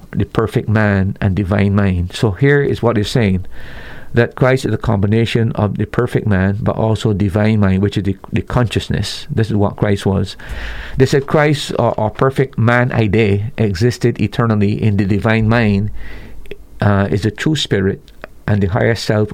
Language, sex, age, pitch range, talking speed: English, male, 50-69, 105-130 Hz, 180 wpm